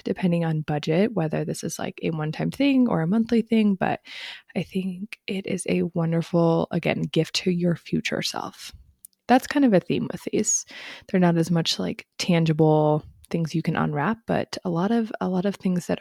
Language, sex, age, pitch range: English, female, 20-39, 165-200 Hz